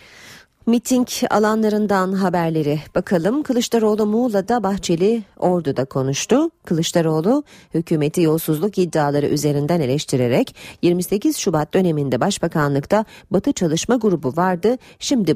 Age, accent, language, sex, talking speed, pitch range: 40-59, native, Turkish, female, 95 wpm, 155-215 Hz